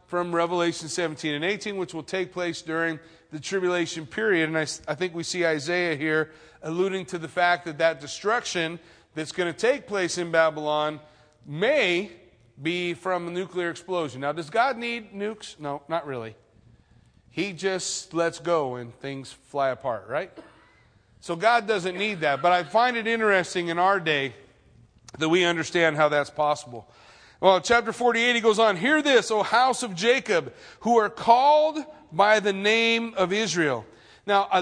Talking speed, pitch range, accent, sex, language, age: 170 wpm, 160-210 Hz, American, male, English, 30-49